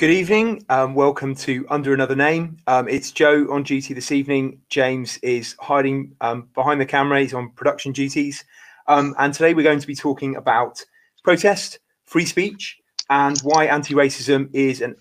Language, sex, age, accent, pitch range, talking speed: English, male, 30-49, British, 130-150 Hz, 170 wpm